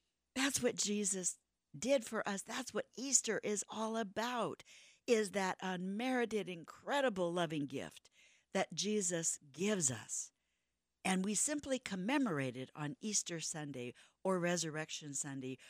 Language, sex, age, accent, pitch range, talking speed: English, female, 60-79, American, 135-200 Hz, 125 wpm